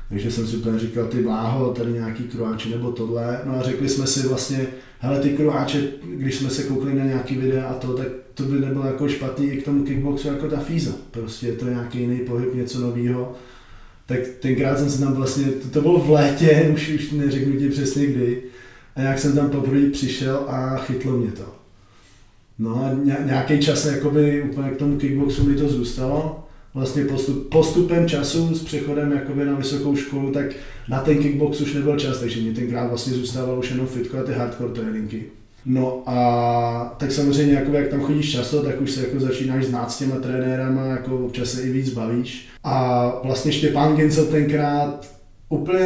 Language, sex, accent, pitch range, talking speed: Czech, male, native, 125-140 Hz, 195 wpm